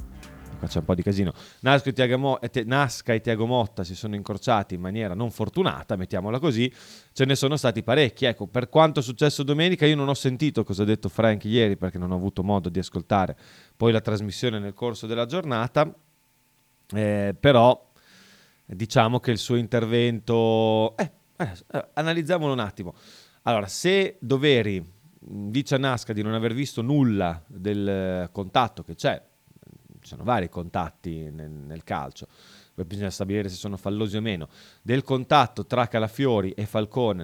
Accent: native